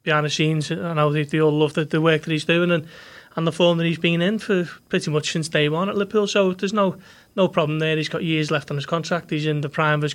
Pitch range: 155-175 Hz